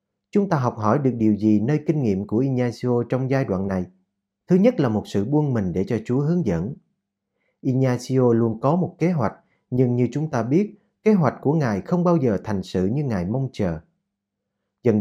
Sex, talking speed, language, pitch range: male, 210 wpm, Vietnamese, 105-165 Hz